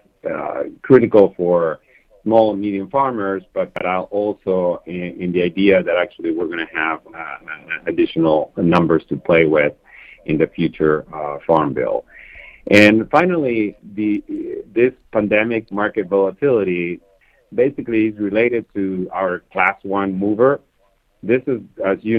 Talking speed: 140 wpm